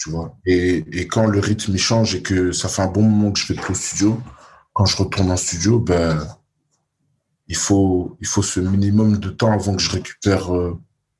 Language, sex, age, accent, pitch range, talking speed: French, male, 20-39, French, 95-120 Hz, 210 wpm